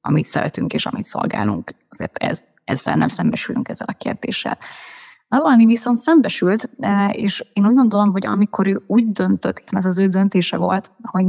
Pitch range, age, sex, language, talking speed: 185-225 Hz, 20-39, female, Hungarian, 165 wpm